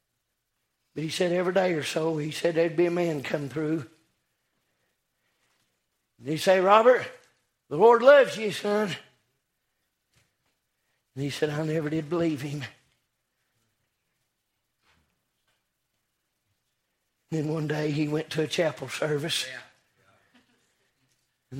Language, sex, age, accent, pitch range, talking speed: English, male, 60-79, American, 150-175 Hz, 120 wpm